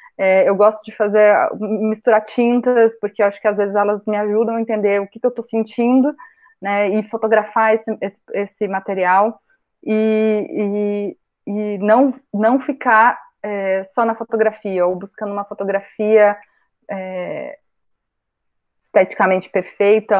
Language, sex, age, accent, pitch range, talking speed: Portuguese, female, 20-39, Brazilian, 205-260 Hz, 145 wpm